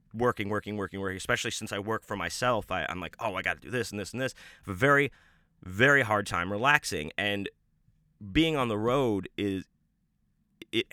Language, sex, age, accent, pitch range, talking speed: English, male, 30-49, American, 95-115 Hz, 210 wpm